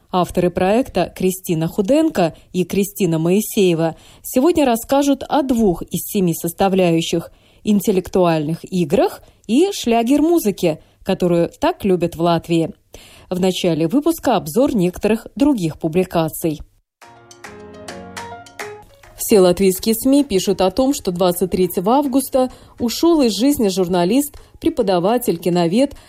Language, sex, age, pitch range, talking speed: Russian, female, 20-39, 180-240 Hz, 110 wpm